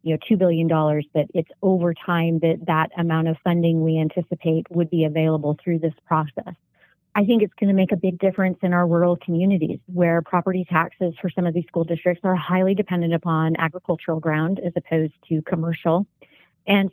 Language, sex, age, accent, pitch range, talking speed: English, female, 30-49, American, 160-180 Hz, 190 wpm